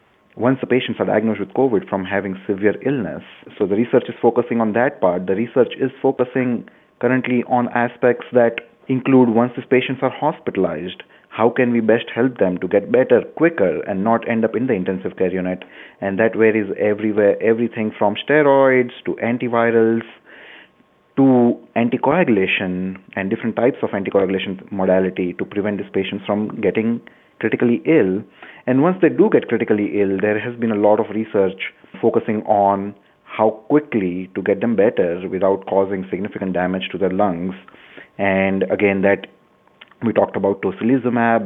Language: English